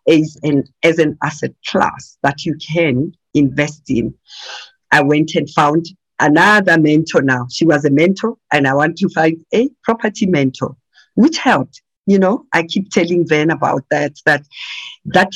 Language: English